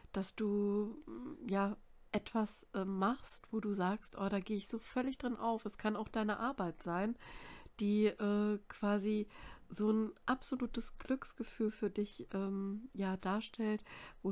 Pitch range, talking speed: 190-215 Hz, 145 wpm